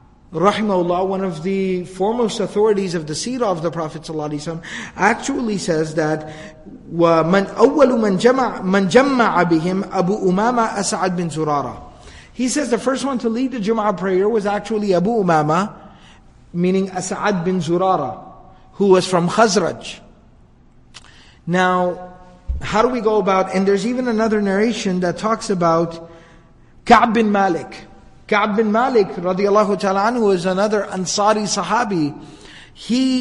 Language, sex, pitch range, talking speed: English, male, 180-225 Hz, 125 wpm